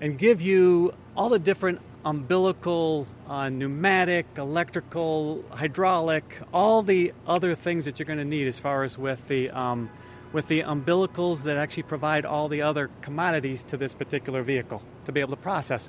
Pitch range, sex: 130-160 Hz, male